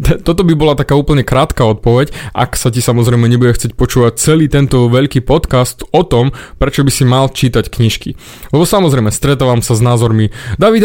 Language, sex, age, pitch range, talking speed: Slovak, male, 20-39, 120-155 Hz, 185 wpm